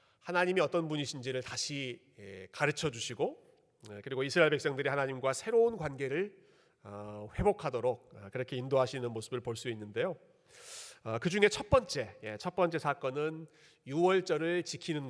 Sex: male